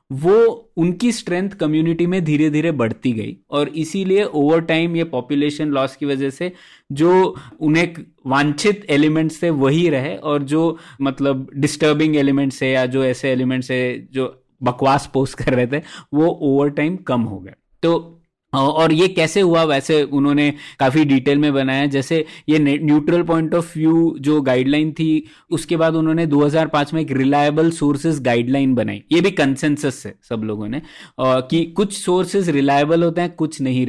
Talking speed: 165 wpm